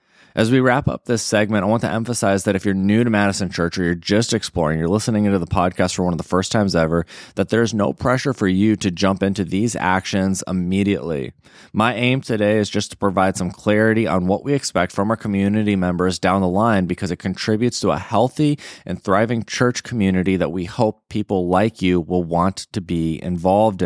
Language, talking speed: English, 215 wpm